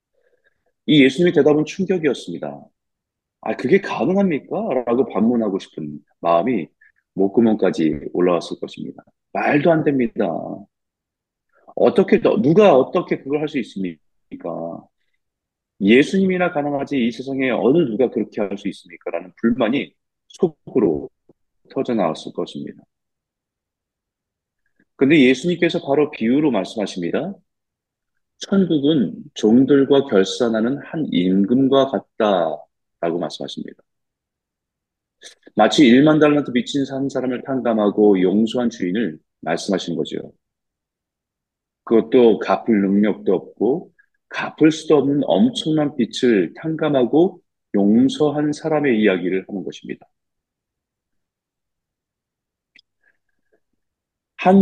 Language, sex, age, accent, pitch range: Korean, male, 30-49, native, 100-155 Hz